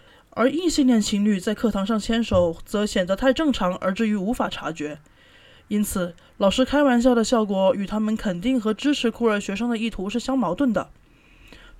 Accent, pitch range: native, 200-255 Hz